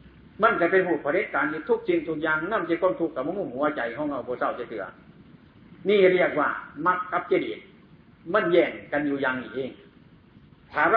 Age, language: 60-79, Thai